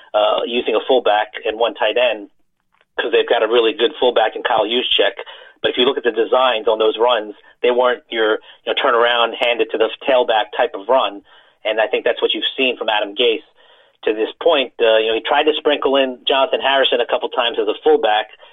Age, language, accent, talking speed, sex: 30-49, English, American, 230 wpm, male